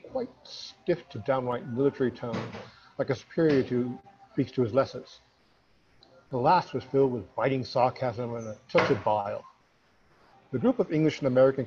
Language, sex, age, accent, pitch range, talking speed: English, male, 50-69, American, 115-145 Hz, 165 wpm